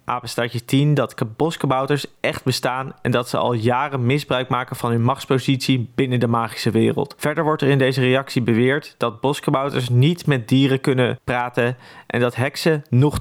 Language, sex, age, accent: Dutch, male, 20-39, Dutch